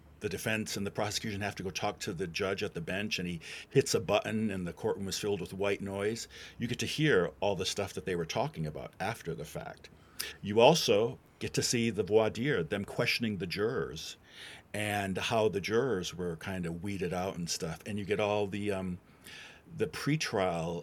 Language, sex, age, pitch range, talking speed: English, male, 50-69, 90-110 Hz, 215 wpm